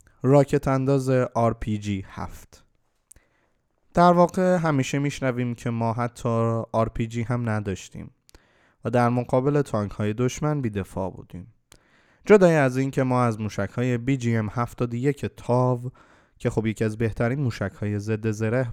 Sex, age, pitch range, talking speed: male, 20-39, 110-135 Hz, 140 wpm